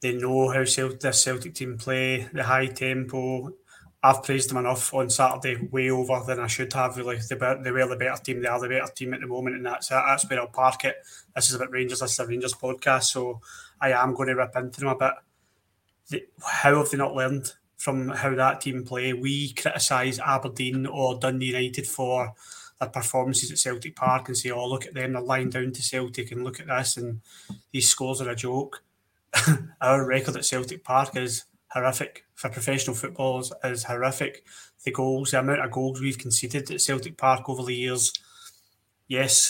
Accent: British